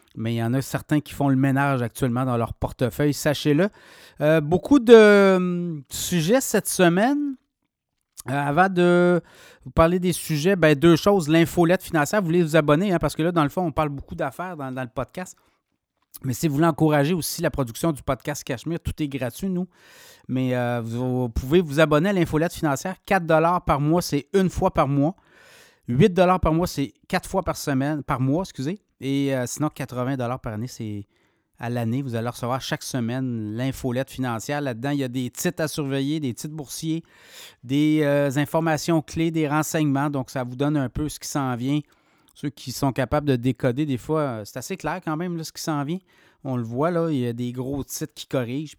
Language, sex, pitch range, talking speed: French, male, 130-165 Hz, 205 wpm